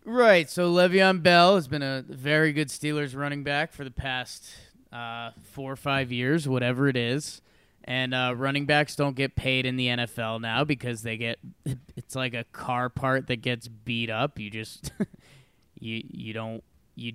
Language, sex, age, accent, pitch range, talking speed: English, male, 20-39, American, 120-155 Hz, 180 wpm